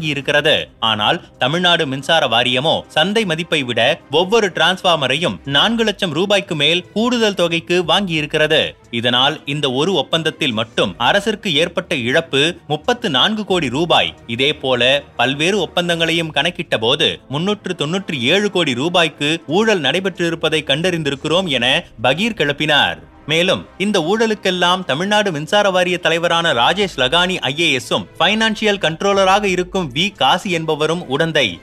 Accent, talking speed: native, 120 wpm